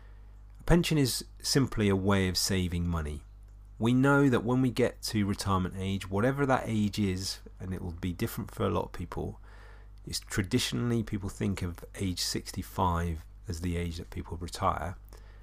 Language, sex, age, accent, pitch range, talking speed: English, male, 40-59, British, 95-110 Hz, 165 wpm